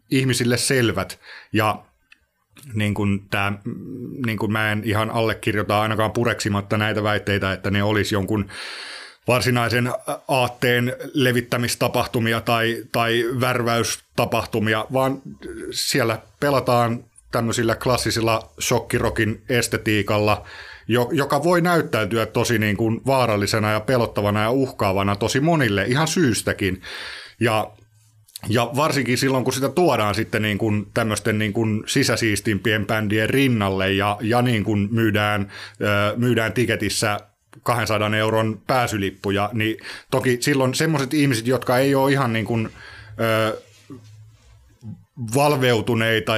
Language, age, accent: Finnish, 30-49, native